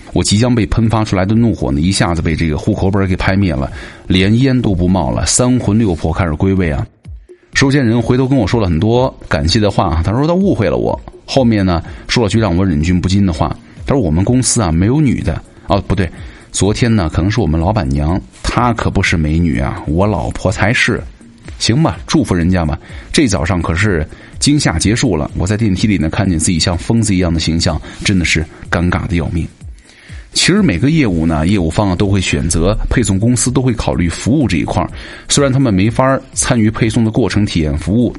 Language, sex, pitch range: Chinese, male, 85-115 Hz